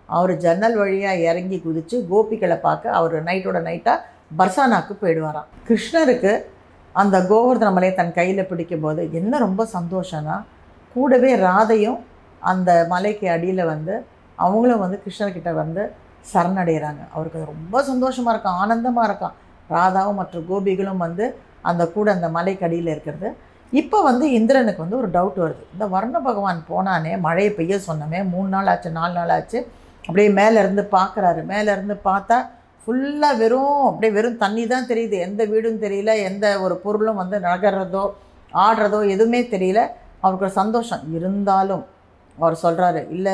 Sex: female